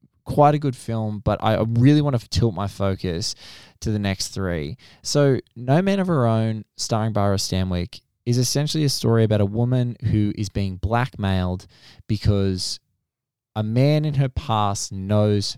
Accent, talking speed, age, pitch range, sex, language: Australian, 165 wpm, 20-39, 100-125 Hz, male, English